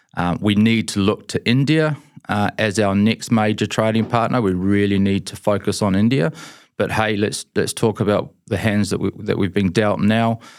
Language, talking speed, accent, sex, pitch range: English, 205 wpm, Australian, male, 95-115 Hz